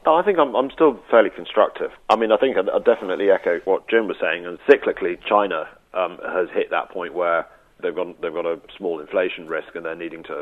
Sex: male